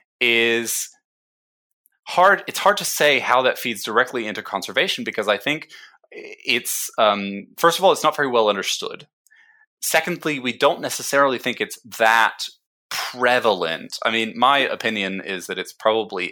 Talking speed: 150 wpm